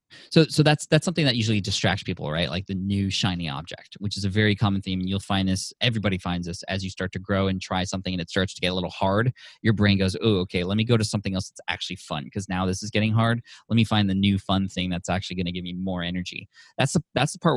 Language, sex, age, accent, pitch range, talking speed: English, male, 20-39, American, 90-105 Hz, 285 wpm